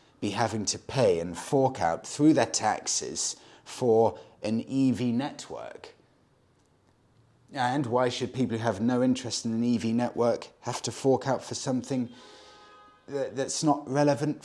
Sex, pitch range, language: male, 95-130 Hz, English